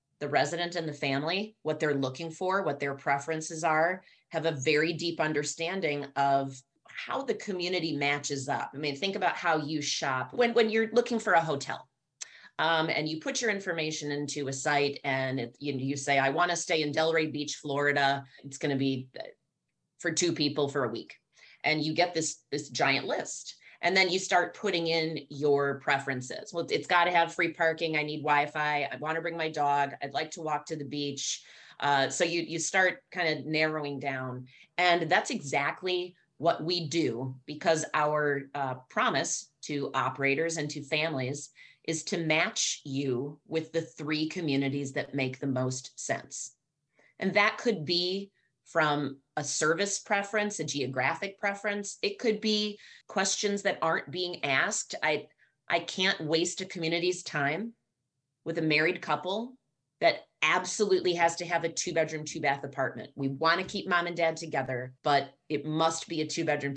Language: English